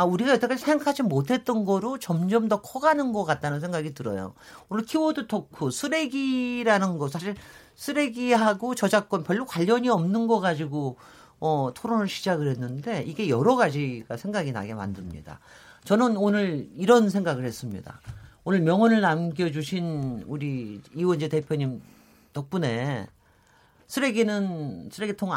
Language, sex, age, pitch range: Korean, male, 40-59, 155-235 Hz